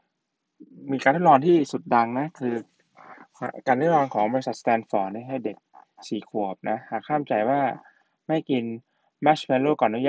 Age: 20-39